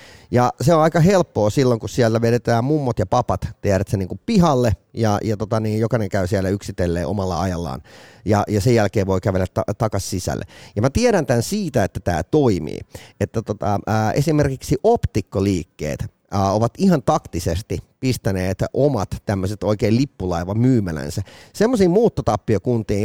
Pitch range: 100-145 Hz